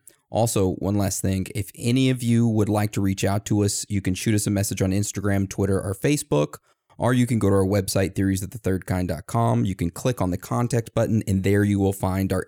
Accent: American